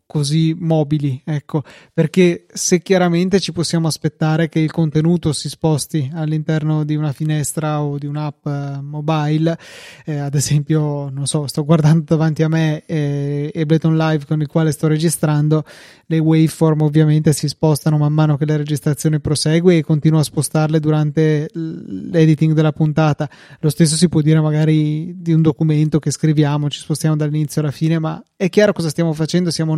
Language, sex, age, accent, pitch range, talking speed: Italian, male, 20-39, native, 150-165 Hz, 165 wpm